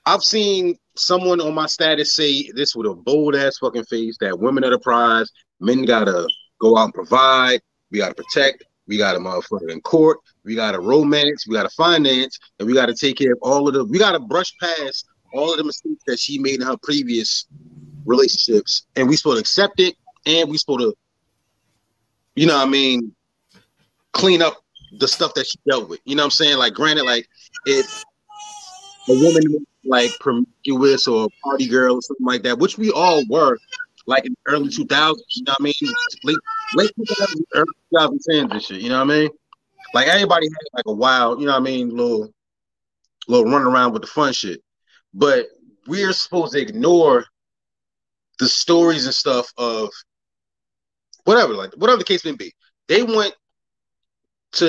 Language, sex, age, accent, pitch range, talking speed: English, male, 30-49, American, 130-195 Hz, 190 wpm